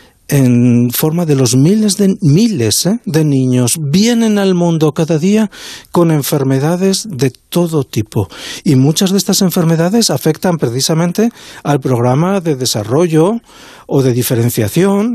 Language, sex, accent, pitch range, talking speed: Spanish, male, Spanish, 130-175 Hz, 135 wpm